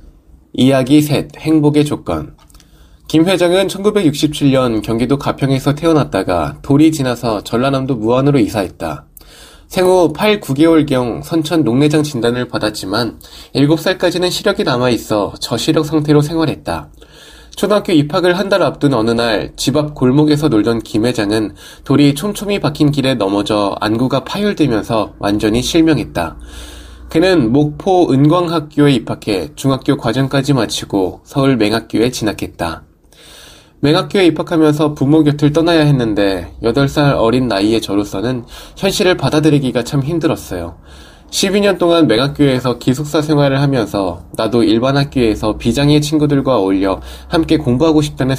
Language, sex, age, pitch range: Korean, male, 20-39, 110-155 Hz